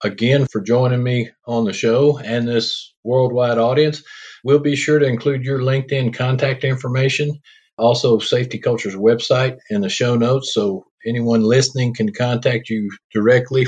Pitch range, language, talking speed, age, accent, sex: 115-140 Hz, English, 155 wpm, 50-69, American, male